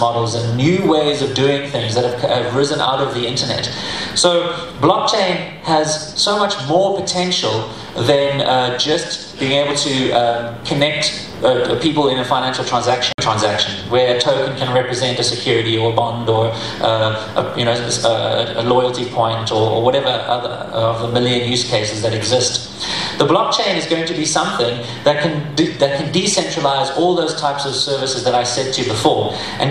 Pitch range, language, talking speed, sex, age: 120-155 Hz, English, 185 wpm, male, 30-49